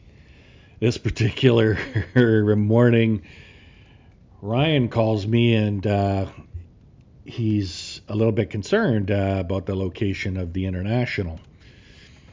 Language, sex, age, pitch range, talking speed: English, male, 40-59, 95-110 Hz, 95 wpm